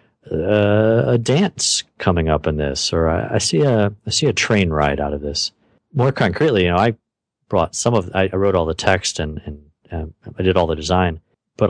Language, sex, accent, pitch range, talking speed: English, male, American, 80-110 Hz, 215 wpm